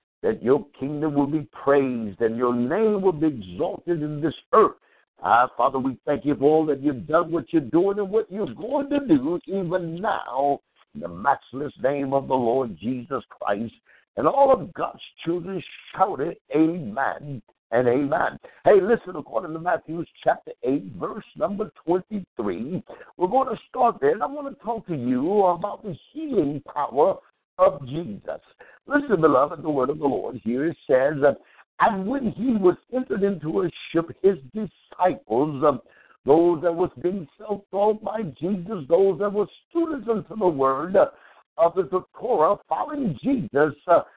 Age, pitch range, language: 60-79, 160-225 Hz, English